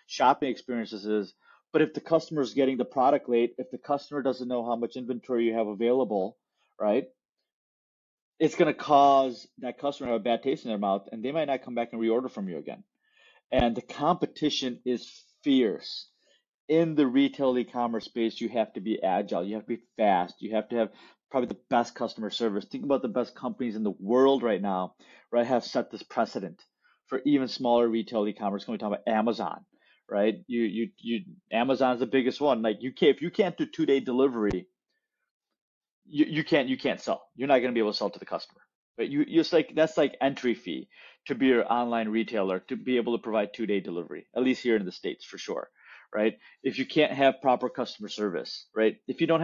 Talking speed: 220 wpm